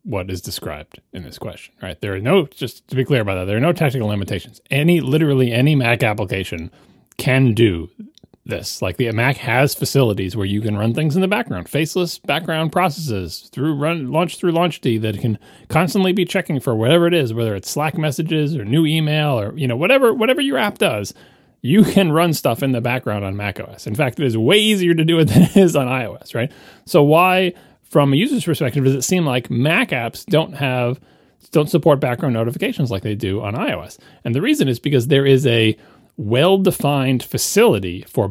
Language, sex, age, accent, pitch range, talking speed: English, male, 30-49, American, 115-170 Hz, 210 wpm